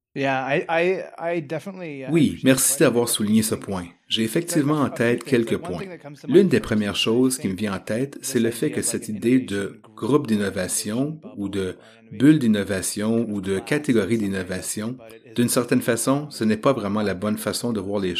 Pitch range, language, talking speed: 105-130 Hz, English, 170 wpm